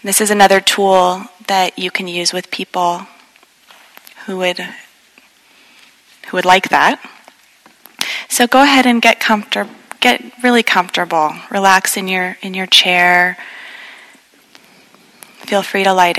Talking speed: 130 wpm